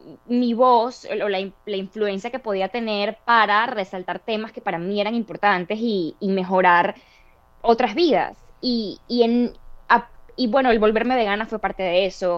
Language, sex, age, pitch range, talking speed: Spanish, female, 10-29, 200-255 Hz, 170 wpm